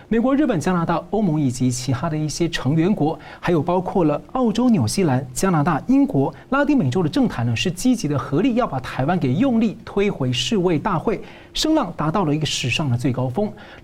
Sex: male